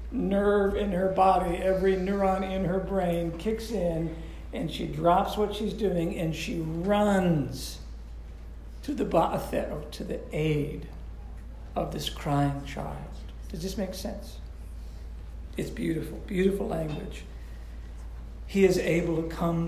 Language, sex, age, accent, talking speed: English, male, 60-79, American, 130 wpm